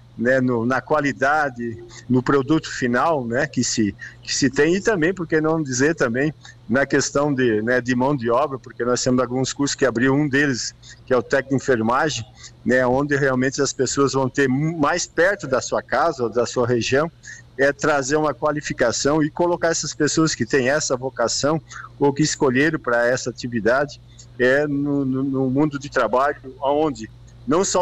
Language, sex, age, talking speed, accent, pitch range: Portuguese, male, 50-69, 185 wpm, Brazilian, 120-150 Hz